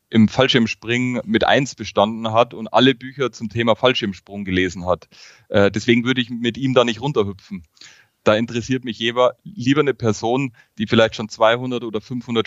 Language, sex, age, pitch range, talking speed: German, male, 30-49, 105-120 Hz, 165 wpm